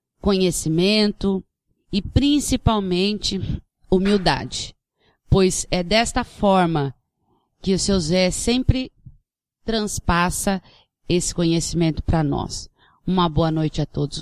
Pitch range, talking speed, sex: 170-215 Hz, 95 wpm, female